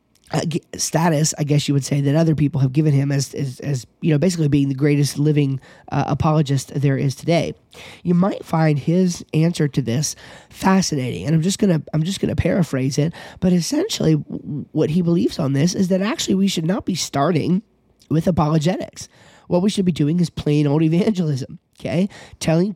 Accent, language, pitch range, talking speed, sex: American, English, 140-170 Hz, 195 wpm, male